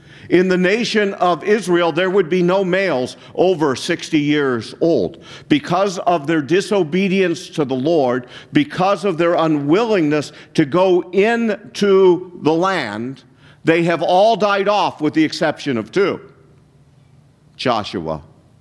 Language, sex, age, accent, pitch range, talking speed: English, male, 50-69, American, 140-185 Hz, 130 wpm